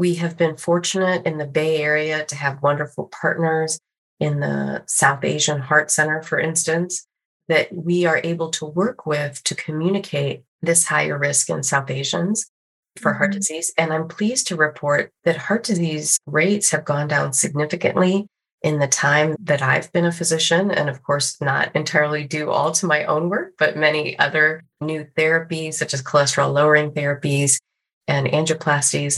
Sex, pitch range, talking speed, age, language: female, 140-170 Hz, 165 wpm, 30-49, English